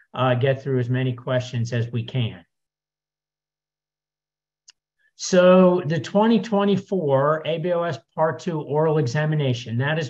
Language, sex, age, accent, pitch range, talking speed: English, male, 50-69, American, 130-160 Hz, 115 wpm